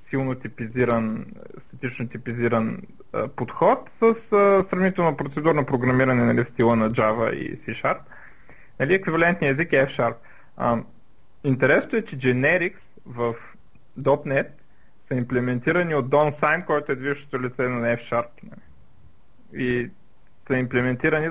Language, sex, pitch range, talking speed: Bulgarian, male, 125-160 Hz, 130 wpm